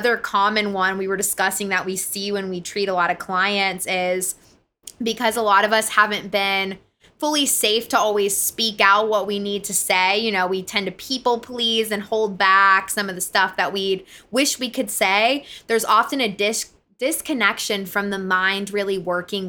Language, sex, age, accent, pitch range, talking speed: English, female, 20-39, American, 190-225 Hz, 205 wpm